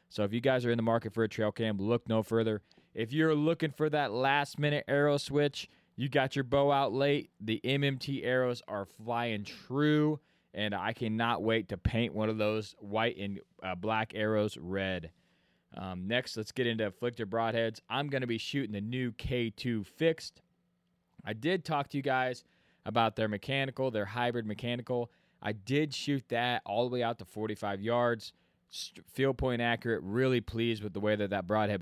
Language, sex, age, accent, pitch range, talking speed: English, male, 20-39, American, 105-125 Hz, 190 wpm